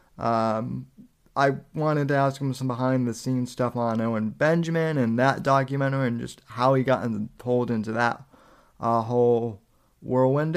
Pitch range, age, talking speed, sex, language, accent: 120-145 Hz, 20-39, 160 wpm, male, English, American